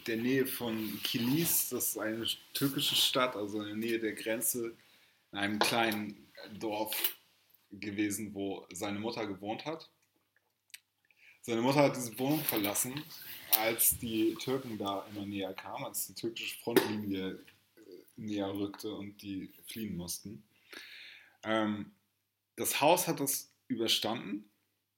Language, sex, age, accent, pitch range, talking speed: German, male, 20-39, German, 105-125 Hz, 125 wpm